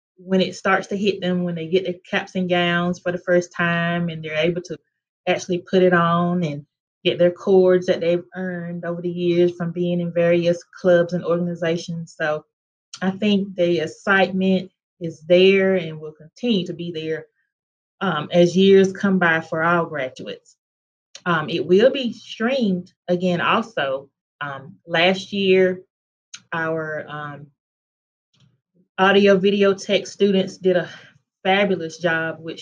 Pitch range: 165-190 Hz